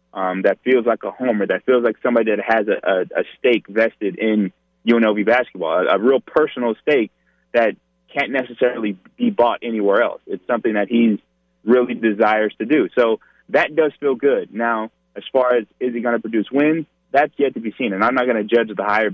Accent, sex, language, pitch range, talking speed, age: American, male, English, 100-125 Hz, 210 wpm, 20-39